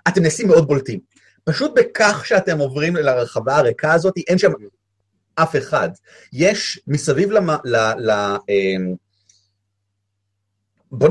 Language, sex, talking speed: Hebrew, male, 120 wpm